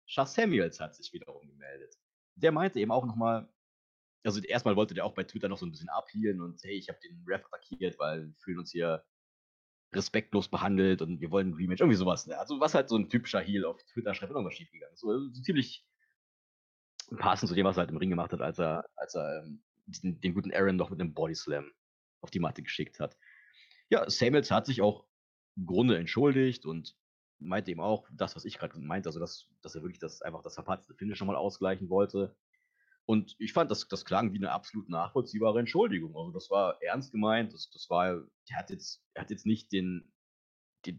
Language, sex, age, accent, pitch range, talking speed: German, male, 30-49, German, 90-125 Hz, 215 wpm